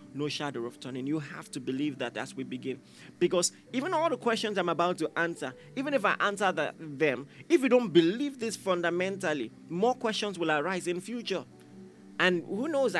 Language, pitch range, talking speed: English, 135-195 Hz, 190 wpm